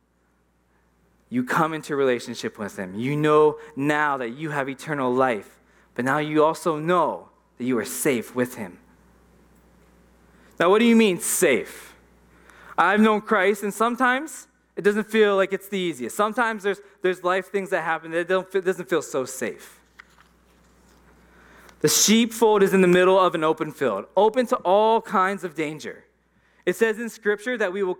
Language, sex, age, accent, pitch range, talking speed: English, male, 20-39, American, 140-205 Hz, 175 wpm